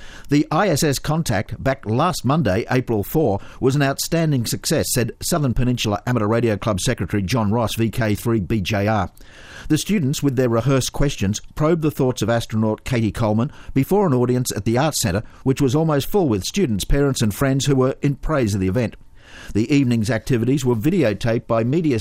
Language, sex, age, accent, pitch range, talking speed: English, male, 50-69, Australian, 110-140 Hz, 180 wpm